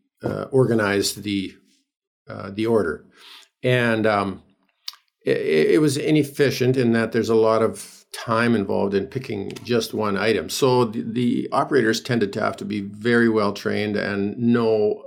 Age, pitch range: 50-69, 100-120 Hz